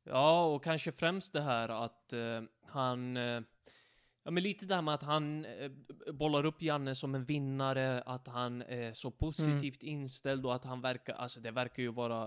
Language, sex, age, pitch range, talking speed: Swedish, male, 20-39, 120-140 Hz, 195 wpm